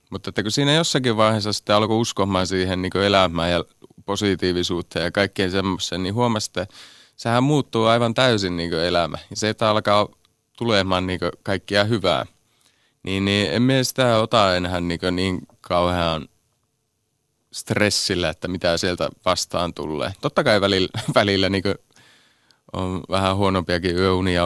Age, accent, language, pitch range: 30-49, native, Finnish, 90-105 Hz